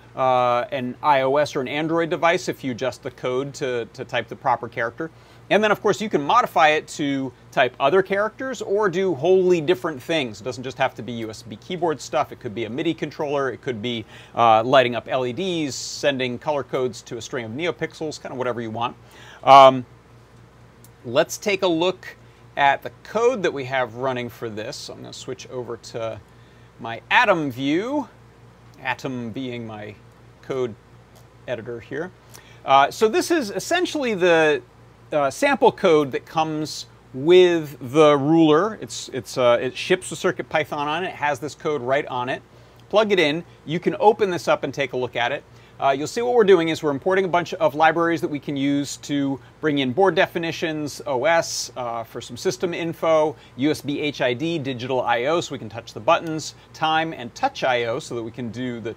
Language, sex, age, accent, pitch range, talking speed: English, male, 40-59, American, 120-165 Hz, 195 wpm